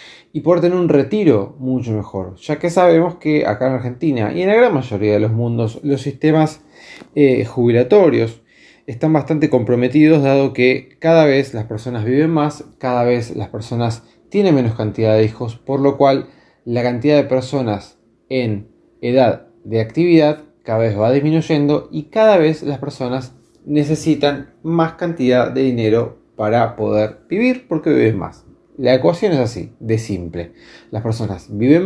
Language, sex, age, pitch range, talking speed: Spanish, male, 20-39, 115-150 Hz, 160 wpm